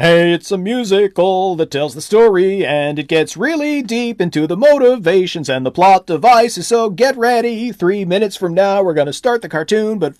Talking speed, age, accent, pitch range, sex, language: 200 wpm, 40-59, American, 150-195 Hz, male, English